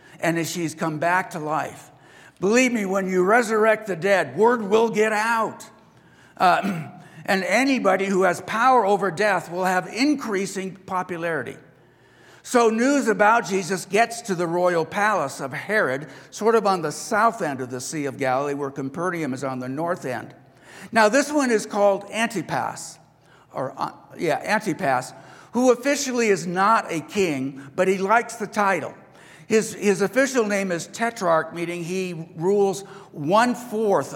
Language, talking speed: English, 155 wpm